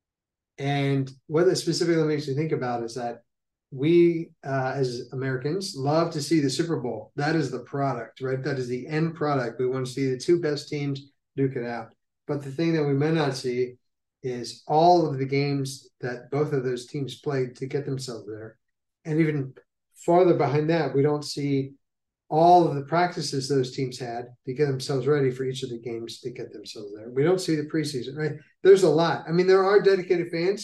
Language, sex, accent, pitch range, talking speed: English, male, American, 130-155 Hz, 210 wpm